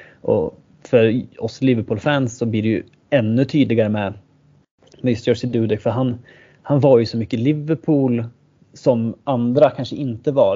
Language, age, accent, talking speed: Swedish, 30-49, native, 155 wpm